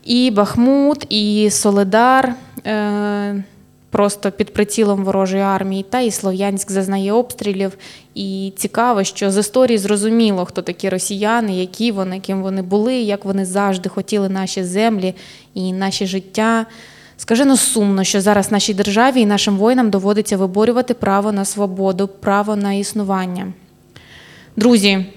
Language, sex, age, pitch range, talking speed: Ukrainian, female, 20-39, 195-230 Hz, 135 wpm